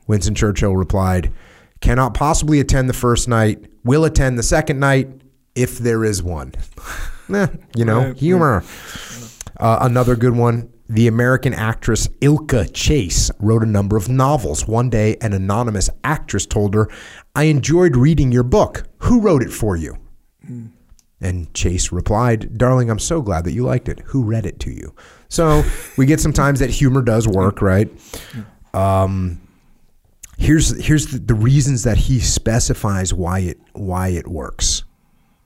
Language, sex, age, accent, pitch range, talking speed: English, male, 30-49, American, 95-125 Hz, 155 wpm